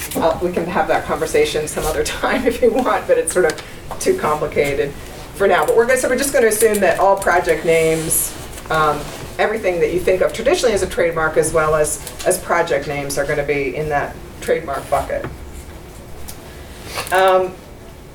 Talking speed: 190 wpm